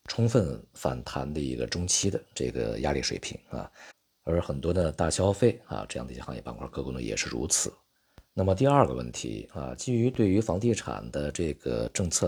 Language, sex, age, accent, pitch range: Chinese, male, 50-69, native, 70-100 Hz